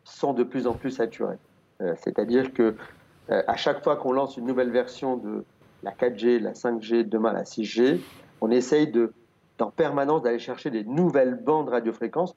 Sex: male